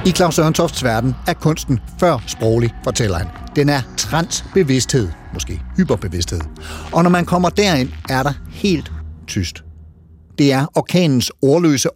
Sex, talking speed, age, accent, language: male, 145 wpm, 60-79, native, Danish